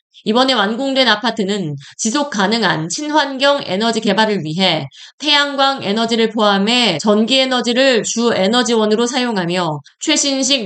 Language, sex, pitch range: Korean, female, 190-260 Hz